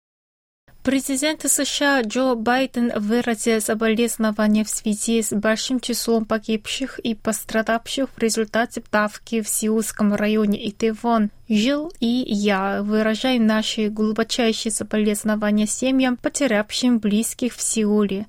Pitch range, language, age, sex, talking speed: 210-235 Hz, Russian, 20-39, female, 110 wpm